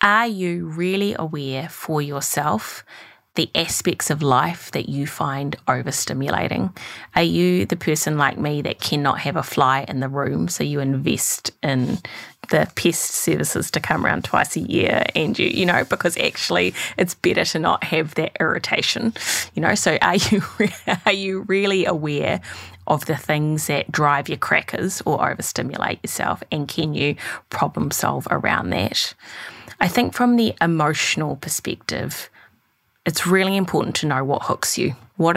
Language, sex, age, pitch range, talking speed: English, female, 20-39, 140-175 Hz, 160 wpm